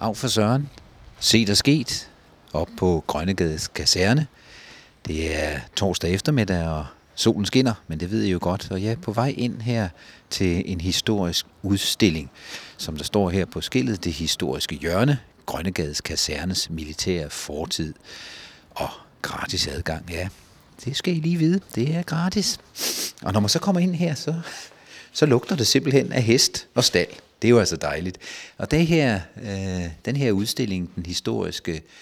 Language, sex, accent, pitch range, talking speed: Danish, male, native, 85-115 Hz, 170 wpm